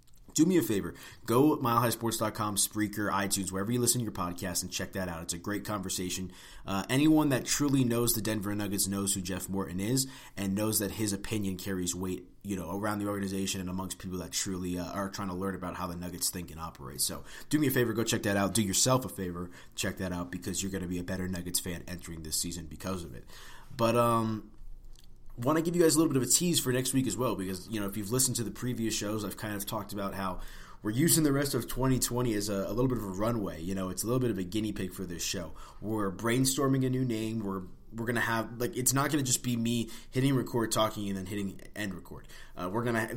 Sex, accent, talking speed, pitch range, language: male, American, 255 wpm, 95-120 Hz, English